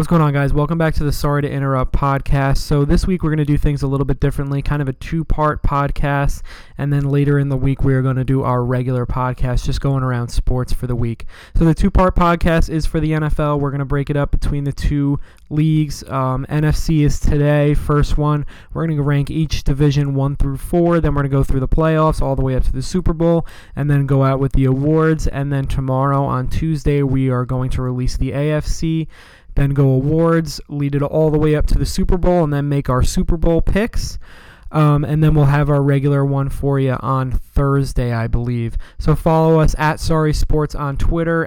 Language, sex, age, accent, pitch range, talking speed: English, male, 20-39, American, 130-150 Hz, 230 wpm